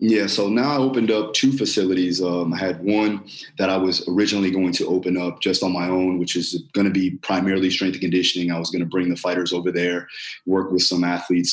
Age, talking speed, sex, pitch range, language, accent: 20-39, 240 wpm, male, 90-100 Hz, English, American